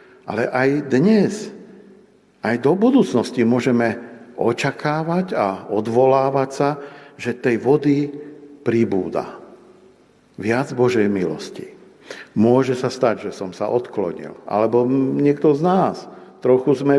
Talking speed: 110 wpm